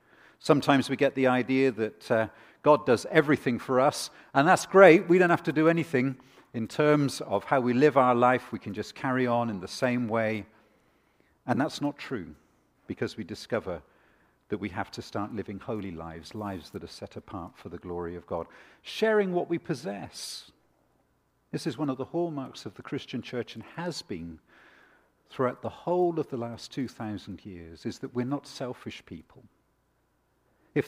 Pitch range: 95-135 Hz